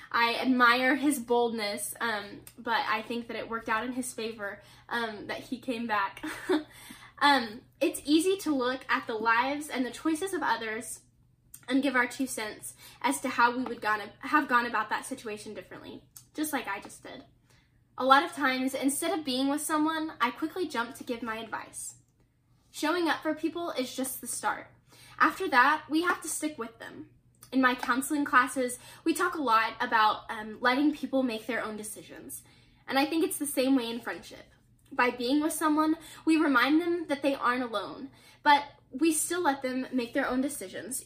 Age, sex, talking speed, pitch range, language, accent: 10-29, female, 190 wpm, 240-305 Hz, English, American